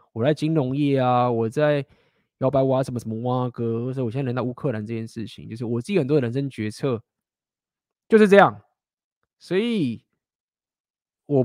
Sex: male